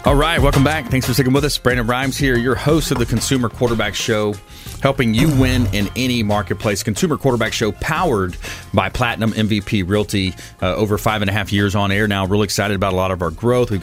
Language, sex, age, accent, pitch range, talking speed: English, male, 30-49, American, 105-130 Hz, 220 wpm